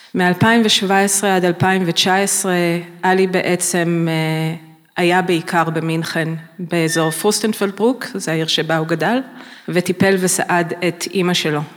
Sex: female